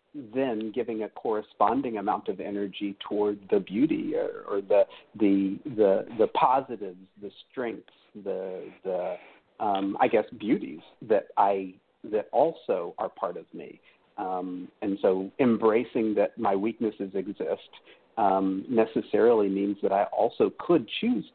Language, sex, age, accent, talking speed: English, male, 50-69, American, 140 wpm